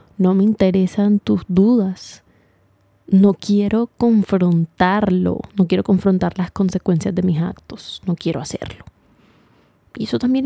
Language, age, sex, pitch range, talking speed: Spanish, 20-39, female, 180-205 Hz, 125 wpm